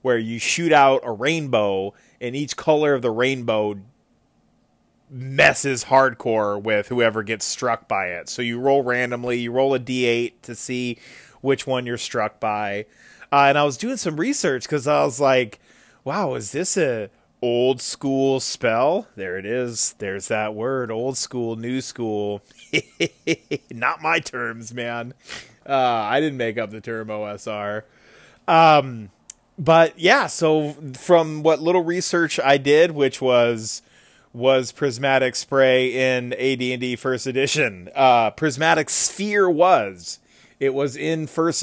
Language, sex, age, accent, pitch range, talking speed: English, male, 30-49, American, 115-140 Hz, 150 wpm